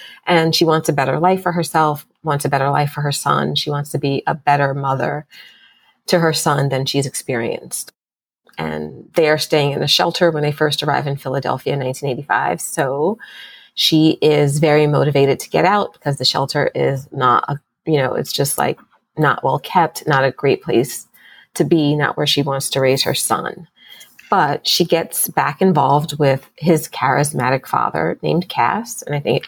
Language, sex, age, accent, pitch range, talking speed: English, female, 30-49, American, 140-165 Hz, 190 wpm